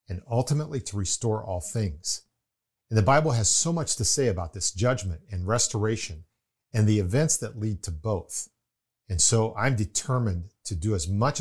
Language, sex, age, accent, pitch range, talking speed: English, male, 50-69, American, 95-125 Hz, 180 wpm